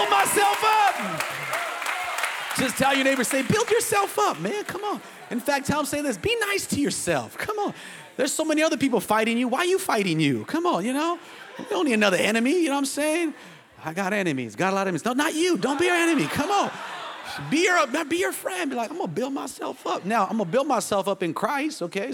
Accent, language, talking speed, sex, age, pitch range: American, English, 245 wpm, male, 30-49, 160-260 Hz